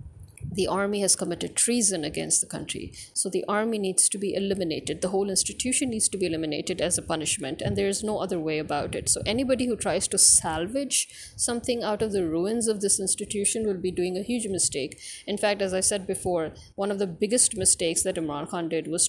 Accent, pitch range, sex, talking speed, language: Indian, 175-215 Hz, female, 215 wpm, English